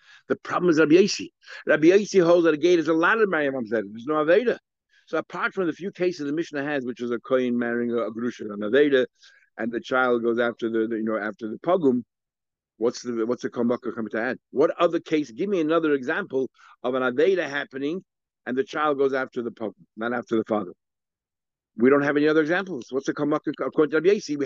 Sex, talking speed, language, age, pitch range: male, 230 wpm, English, 60-79, 120-175 Hz